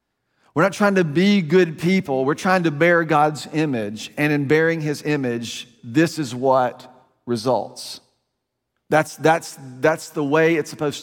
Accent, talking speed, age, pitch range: American, 160 wpm, 40-59, 140-175 Hz